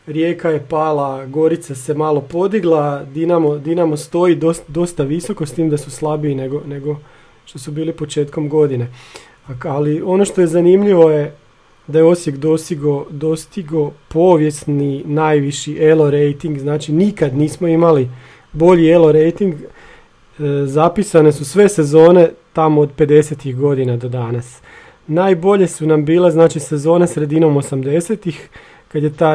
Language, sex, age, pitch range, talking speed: Croatian, male, 40-59, 145-165 Hz, 145 wpm